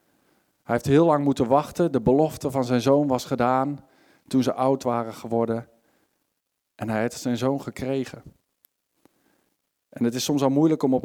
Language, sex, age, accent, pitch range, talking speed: Dutch, male, 50-69, Dutch, 115-135 Hz, 175 wpm